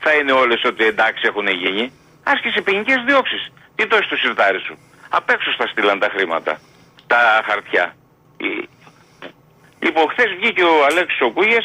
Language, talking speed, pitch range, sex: Greek, 150 wpm, 120-175 Hz, male